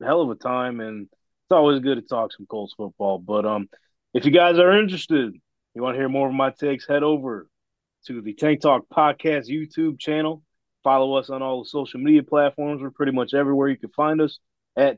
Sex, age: male, 20-39